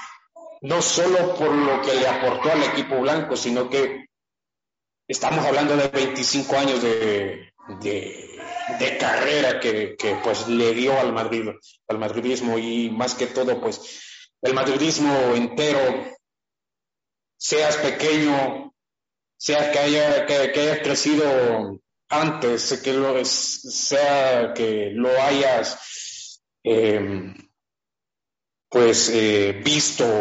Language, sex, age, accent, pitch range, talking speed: English, male, 40-59, Mexican, 120-150 Hz, 115 wpm